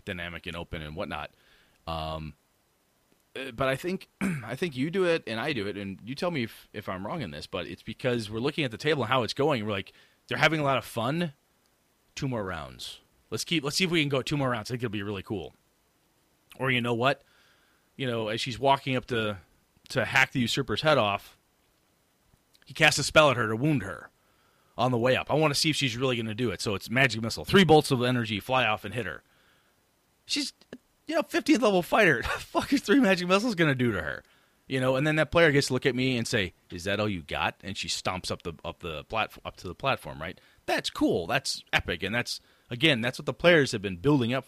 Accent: American